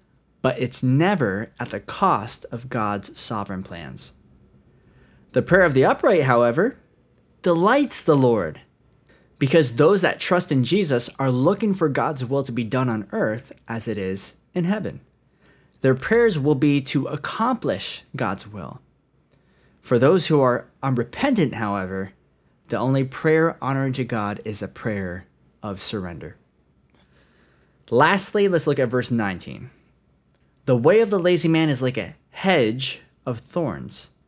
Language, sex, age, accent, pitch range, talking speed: English, male, 20-39, American, 110-155 Hz, 145 wpm